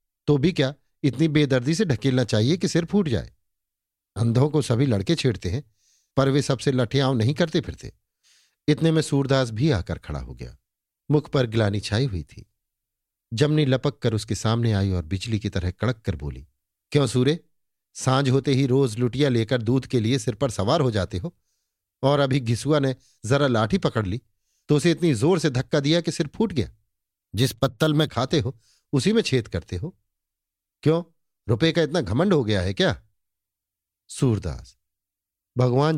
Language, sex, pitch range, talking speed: Hindi, male, 100-140 Hz, 180 wpm